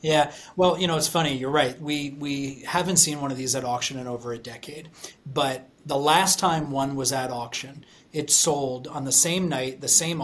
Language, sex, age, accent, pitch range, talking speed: English, male, 30-49, American, 130-155 Hz, 215 wpm